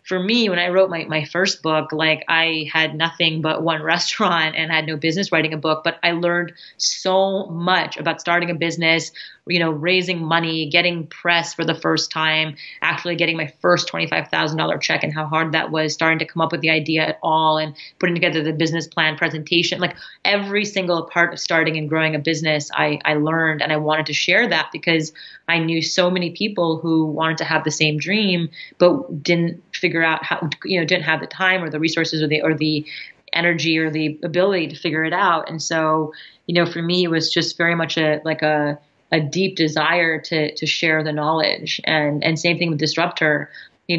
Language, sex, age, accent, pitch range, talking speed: English, female, 30-49, American, 155-170 Hz, 215 wpm